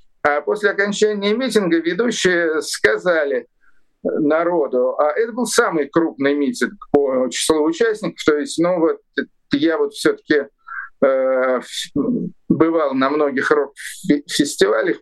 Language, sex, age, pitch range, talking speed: Russian, male, 50-69, 145-225 Hz, 115 wpm